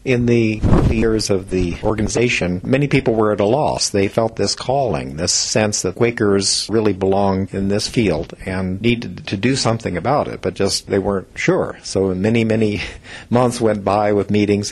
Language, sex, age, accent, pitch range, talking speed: English, male, 50-69, American, 90-105 Hz, 190 wpm